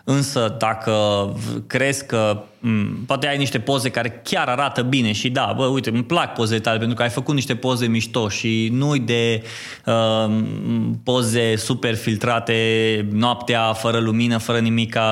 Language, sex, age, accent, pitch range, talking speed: Romanian, male, 20-39, native, 110-140 Hz, 160 wpm